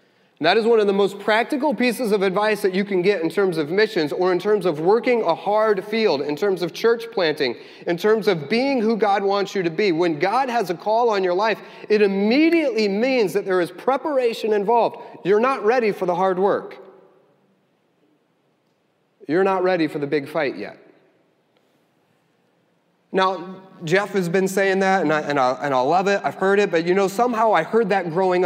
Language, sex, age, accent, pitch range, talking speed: English, male, 30-49, American, 160-205 Hz, 205 wpm